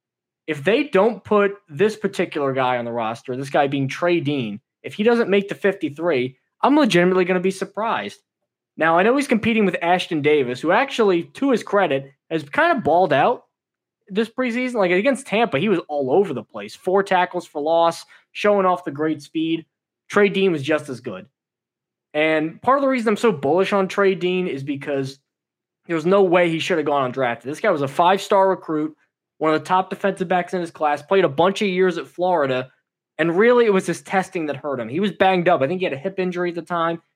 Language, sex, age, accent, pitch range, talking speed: English, male, 20-39, American, 150-195 Hz, 225 wpm